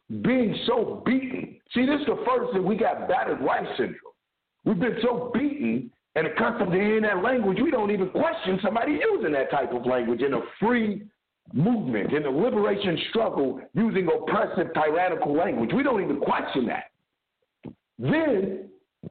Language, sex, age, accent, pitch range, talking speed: English, male, 50-69, American, 180-260 Hz, 165 wpm